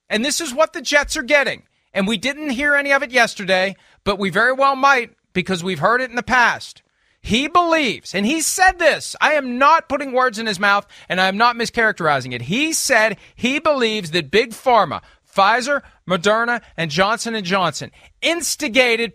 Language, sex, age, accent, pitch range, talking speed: English, male, 40-59, American, 200-280 Hz, 190 wpm